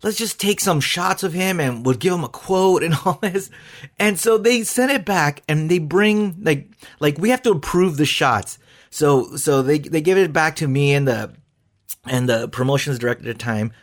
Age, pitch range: 30-49, 130-190 Hz